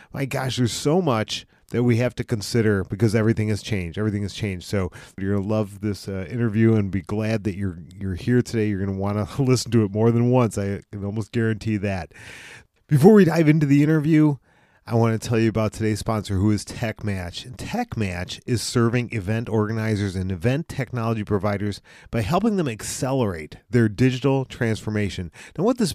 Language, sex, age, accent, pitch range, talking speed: English, male, 40-59, American, 105-140 Hz, 195 wpm